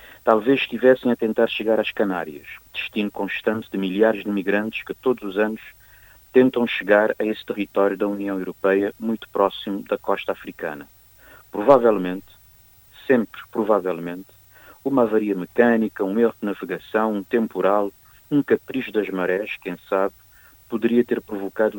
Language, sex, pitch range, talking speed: Portuguese, male, 100-115 Hz, 140 wpm